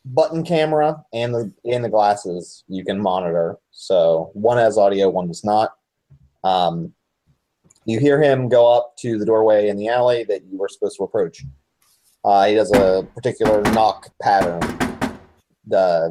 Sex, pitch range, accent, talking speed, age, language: male, 105-155 Hz, American, 160 wpm, 30-49, English